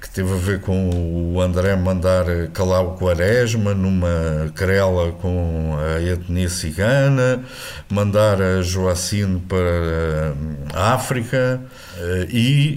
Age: 50-69